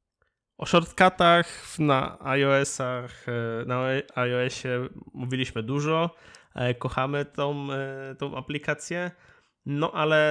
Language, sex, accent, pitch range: Polish, male, native, 125-145 Hz